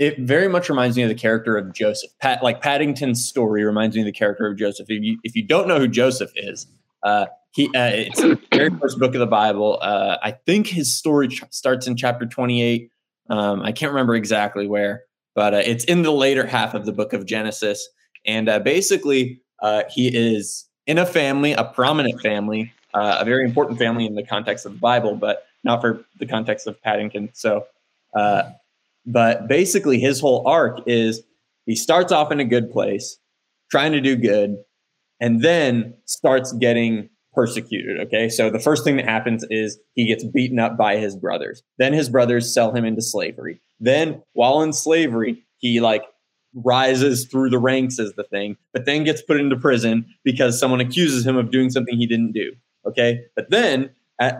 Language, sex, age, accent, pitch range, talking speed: English, male, 20-39, American, 110-135 Hz, 195 wpm